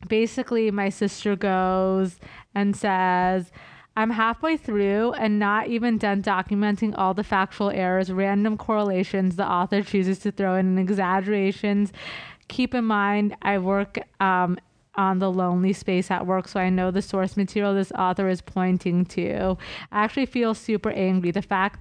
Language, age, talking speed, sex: English, 20-39, 160 wpm, female